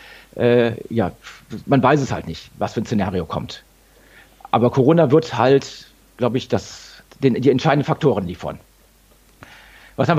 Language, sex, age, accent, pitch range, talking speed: German, male, 50-69, German, 115-150 Hz, 140 wpm